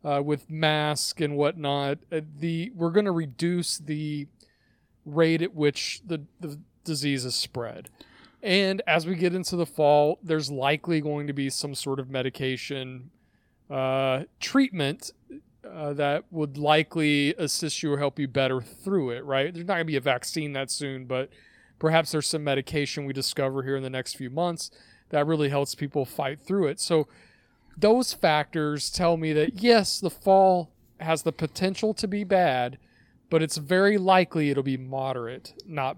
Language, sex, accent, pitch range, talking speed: English, male, American, 135-170 Hz, 170 wpm